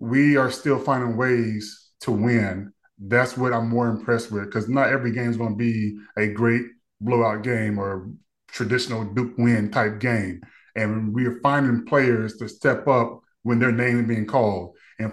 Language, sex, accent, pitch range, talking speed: English, male, American, 115-125 Hz, 185 wpm